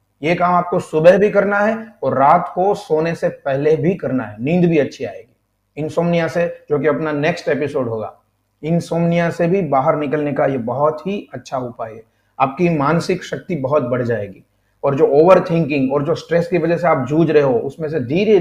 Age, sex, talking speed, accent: 40-59, male, 205 wpm, native